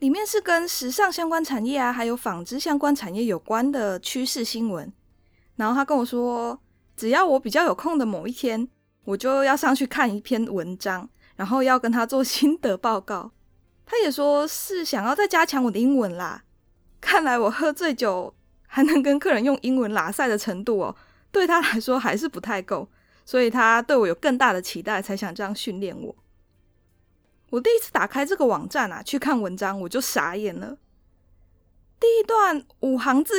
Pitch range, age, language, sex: 210-290 Hz, 20-39, Chinese, female